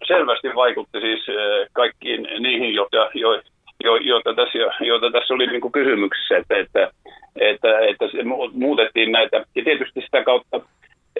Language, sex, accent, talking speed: Finnish, male, native, 135 wpm